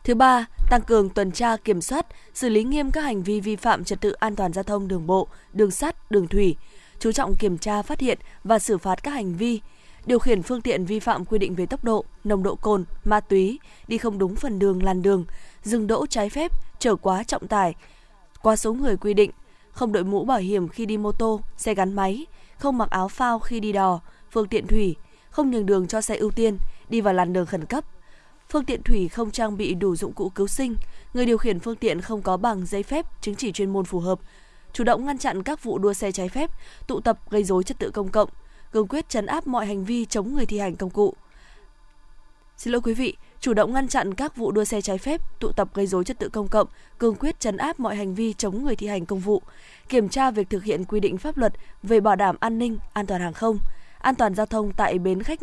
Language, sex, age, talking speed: Vietnamese, female, 20-39, 250 wpm